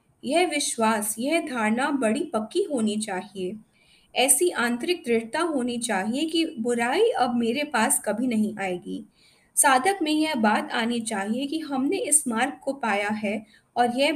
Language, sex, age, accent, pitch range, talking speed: Hindi, female, 20-39, native, 220-295 Hz, 155 wpm